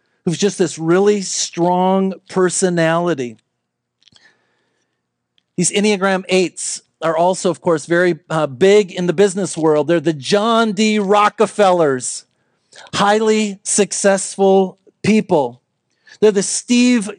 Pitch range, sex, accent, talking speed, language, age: 175-215 Hz, male, American, 110 wpm, English, 40-59